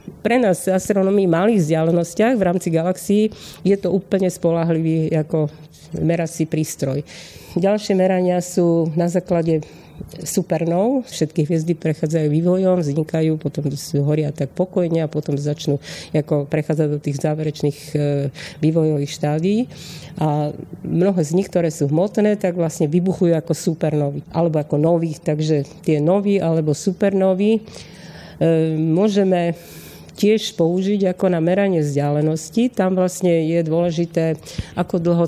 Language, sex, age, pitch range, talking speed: Slovak, female, 40-59, 155-185 Hz, 125 wpm